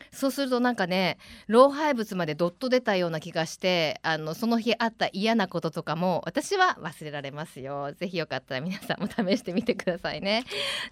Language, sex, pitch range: Japanese, female, 190-300 Hz